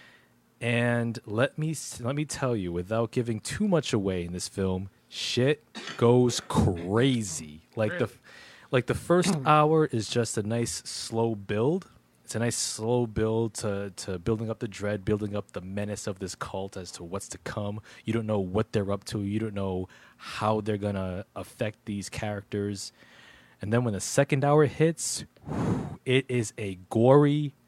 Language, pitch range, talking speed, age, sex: English, 100-125 Hz, 175 wpm, 20-39, male